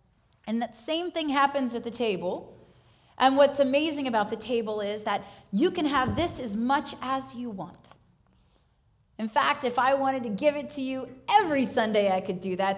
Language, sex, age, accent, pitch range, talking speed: English, female, 30-49, American, 180-240 Hz, 195 wpm